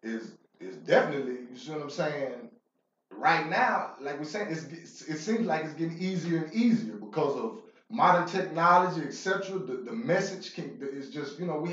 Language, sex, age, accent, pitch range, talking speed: English, male, 30-49, American, 140-190 Hz, 185 wpm